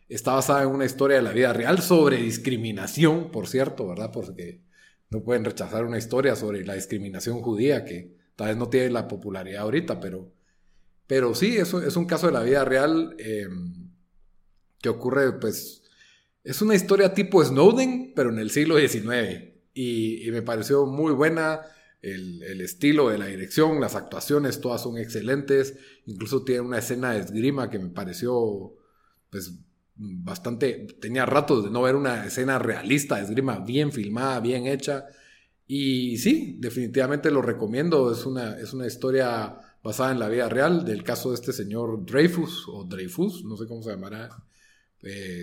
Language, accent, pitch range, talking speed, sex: Spanish, Mexican, 105-140 Hz, 165 wpm, male